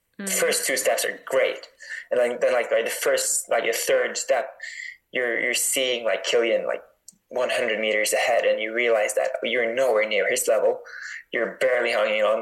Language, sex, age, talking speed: English, male, 20-39, 190 wpm